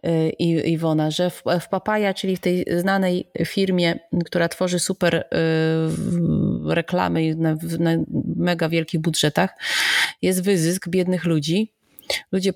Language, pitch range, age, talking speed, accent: Polish, 160-175 Hz, 30-49, 105 wpm, native